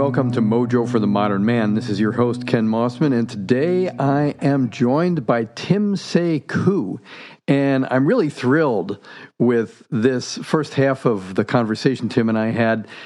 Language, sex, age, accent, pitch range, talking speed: English, male, 50-69, American, 110-140 Hz, 165 wpm